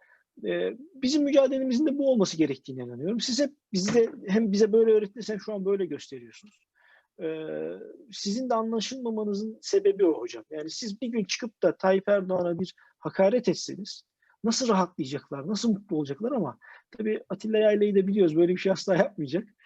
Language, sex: Turkish, male